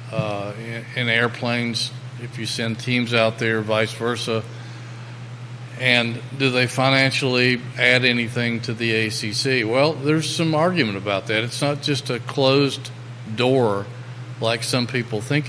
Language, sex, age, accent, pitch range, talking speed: English, male, 40-59, American, 115-125 Hz, 140 wpm